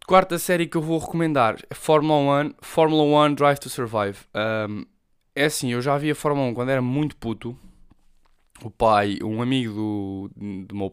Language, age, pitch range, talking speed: Portuguese, 10-29, 110-150 Hz, 185 wpm